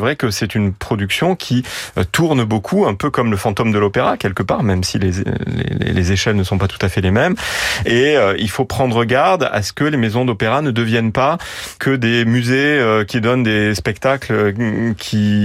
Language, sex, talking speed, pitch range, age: French, male, 215 wpm, 100-125 Hz, 30-49